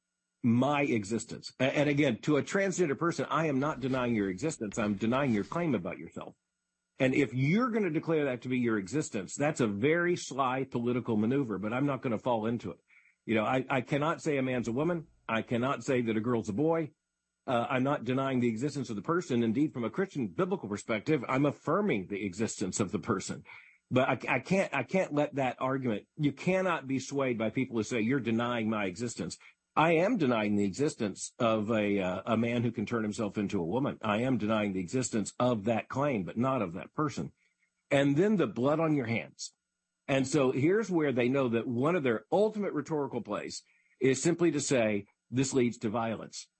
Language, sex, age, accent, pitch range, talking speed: English, male, 50-69, American, 115-150 Hz, 210 wpm